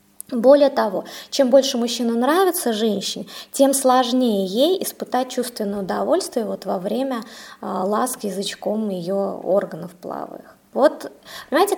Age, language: 20-39, Russian